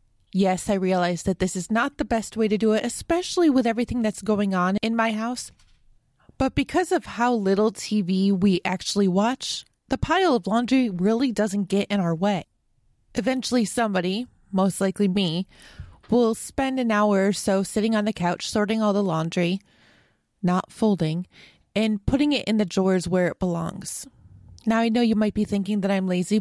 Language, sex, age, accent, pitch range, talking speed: English, female, 20-39, American, 195-245 Hz, 185 wpm